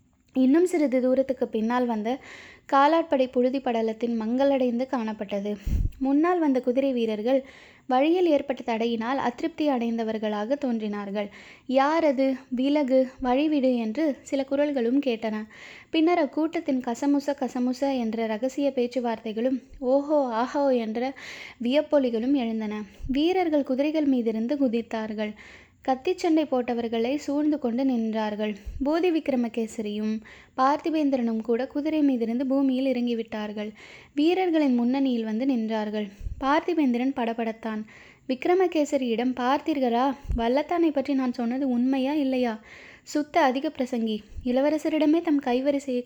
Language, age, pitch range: Tamil, 20-39, 230-285 Hz